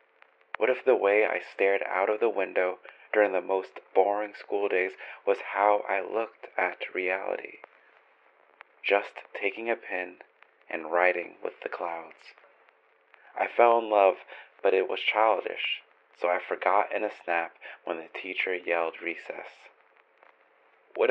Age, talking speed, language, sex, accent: 30-49, 145 wpm, English, male, American